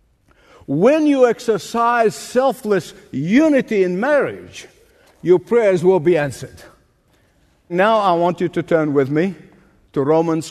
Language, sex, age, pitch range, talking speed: English, male, 50-69, 145-230 Hz, 125 wpm